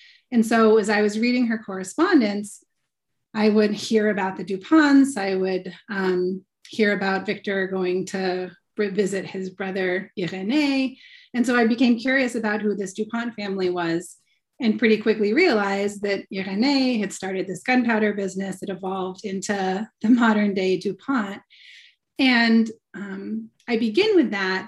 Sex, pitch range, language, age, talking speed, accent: female, 195-235 Hz, English, 30-49, 150 wpm, American